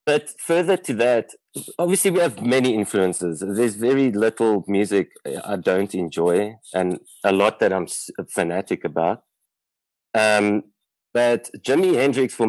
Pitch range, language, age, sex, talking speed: 95-120 Hz, English, 20-39, male, 135 wpm